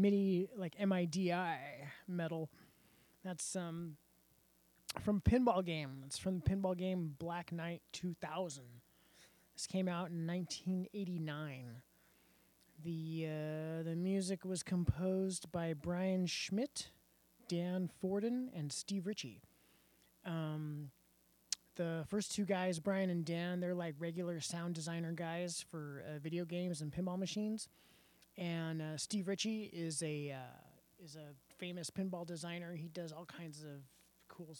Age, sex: 20-39, male